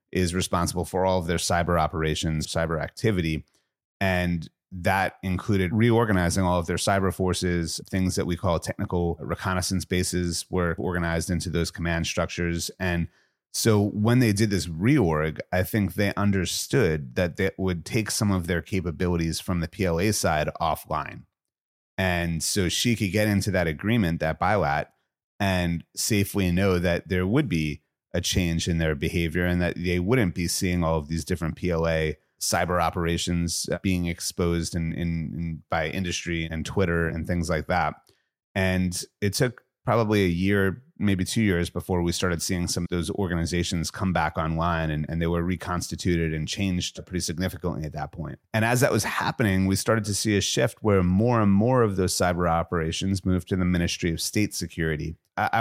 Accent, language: American, English